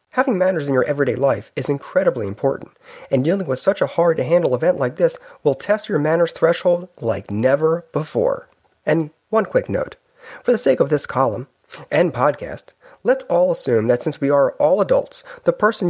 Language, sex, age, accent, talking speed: English, male, 30-49, American, 185 wpm